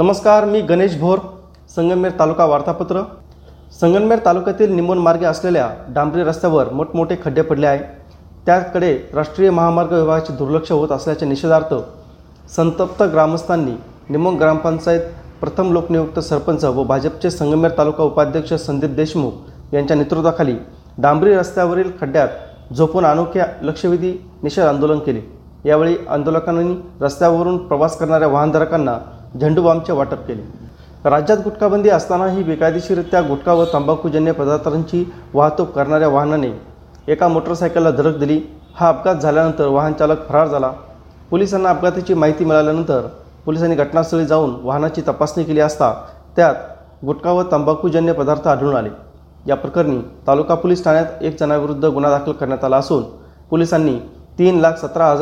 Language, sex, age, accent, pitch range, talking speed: Marathi, male, 30-49, native, 145-170 Hz, 125 wpm